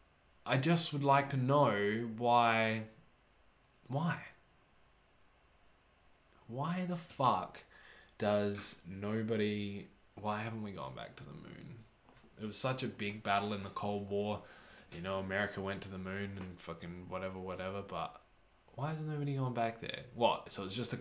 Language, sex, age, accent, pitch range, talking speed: English, male, 20-39, Australian, 105-145 Hz, 155 wpm